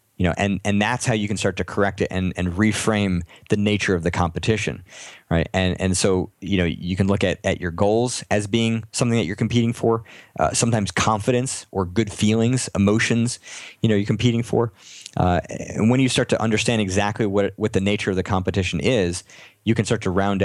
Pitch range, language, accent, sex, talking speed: 90-110 Hz, English, American, male, 215 wpm